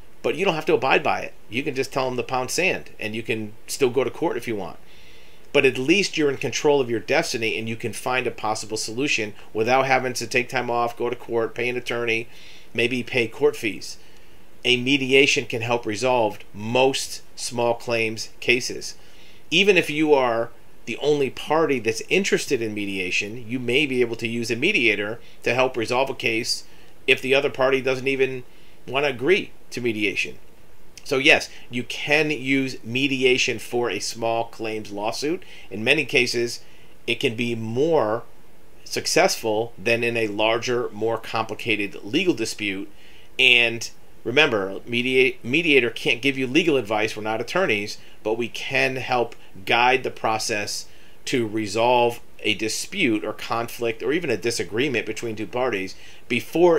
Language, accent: English, American